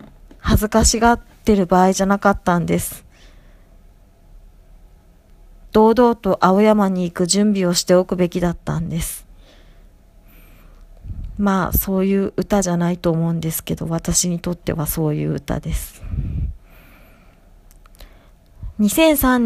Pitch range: 165-215 Hz